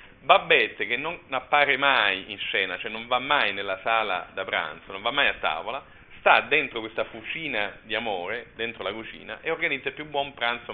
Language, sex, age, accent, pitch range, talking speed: Italian, male, 40-59, native, 110-160 Hz, 195 wpm